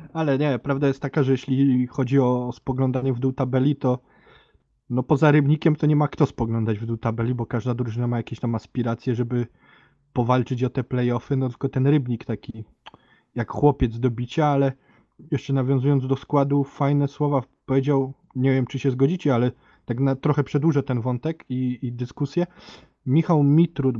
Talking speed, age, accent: 180 wpm, 20-39, native